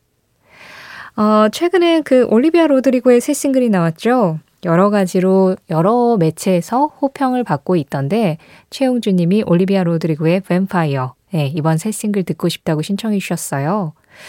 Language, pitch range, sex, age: Korean, 165-240 Hz, female, 20-39